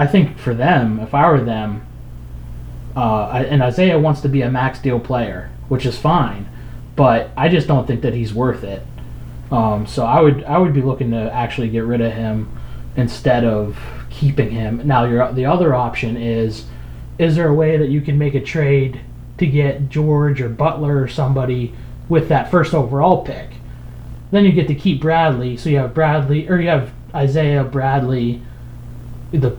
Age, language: 20-39, English